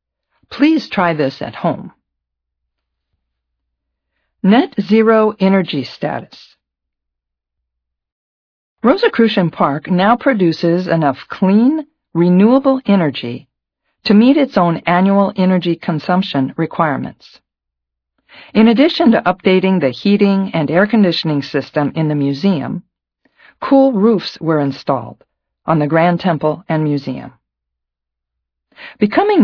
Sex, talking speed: female, 100 wpm